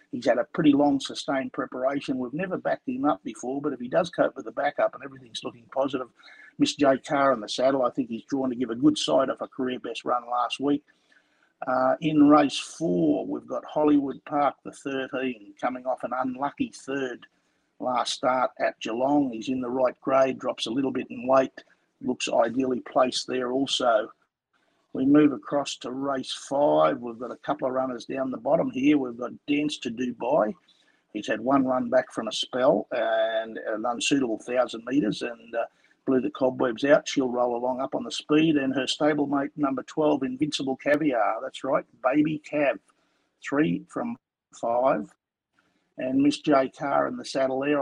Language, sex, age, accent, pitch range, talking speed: English, male, 50-69, Australian, 130-150 Hz, 190 wpm